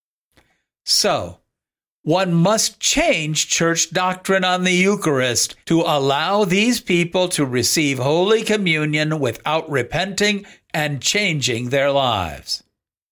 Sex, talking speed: male, 105 wpm